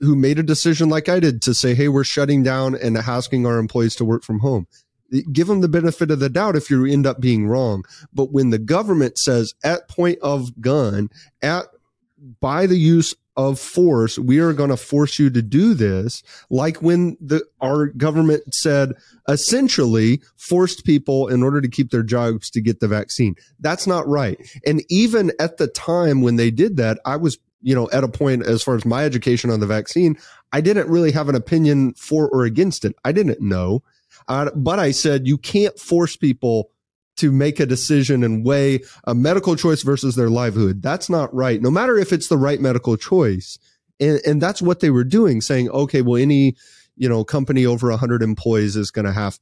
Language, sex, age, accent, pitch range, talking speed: English, male, 30-49, American, 120-155 Hz, 205 wpm